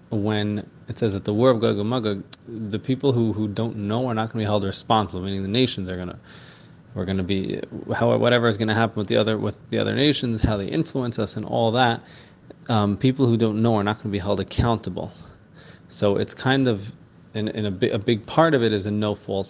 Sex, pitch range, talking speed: male, 100-120 Hz, 245 wpm